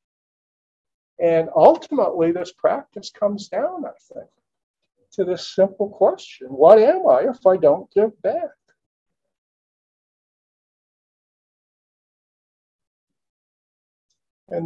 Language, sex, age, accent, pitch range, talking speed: English, male, 50-69, American, 160-265 Hz, 85 wpm